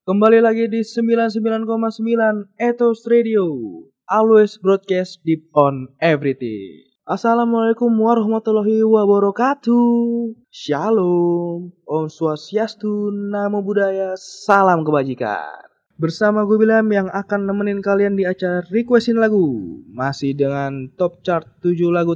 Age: 20-39